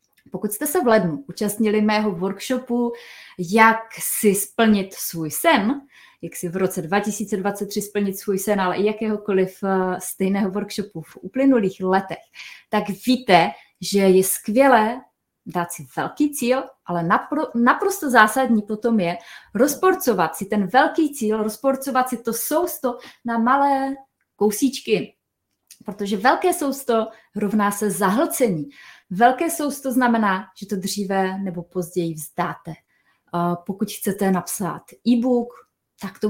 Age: 20-39